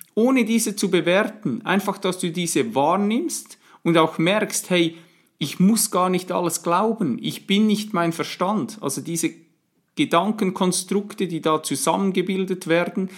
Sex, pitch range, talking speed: male, 155-185 Hz, 140 wpm